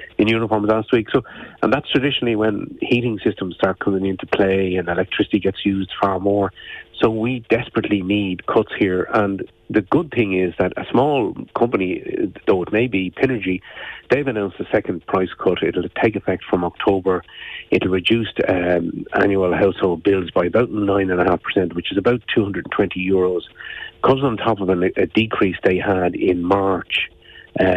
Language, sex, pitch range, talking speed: English, male, 90-105 Hz, 165 wpm